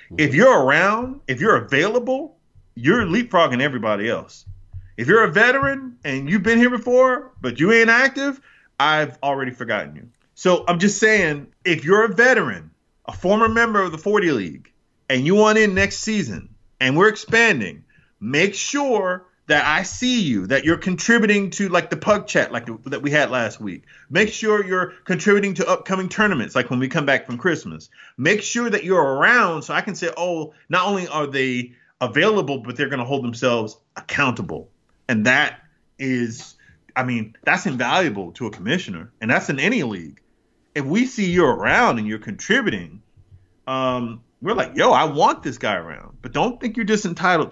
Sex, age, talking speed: male, 30-49, 185 wpm